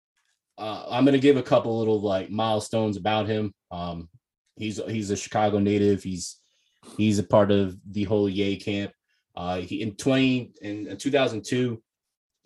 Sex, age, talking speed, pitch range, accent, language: male, 20-39, 155 wpm, 95-110 Hz, American, Finnish